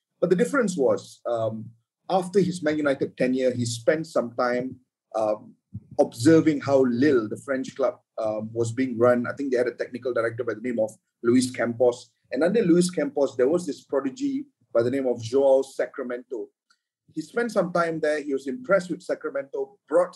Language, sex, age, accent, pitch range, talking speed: English, male, 30-49, Malaysian, 130-200 Hz, 190 wpm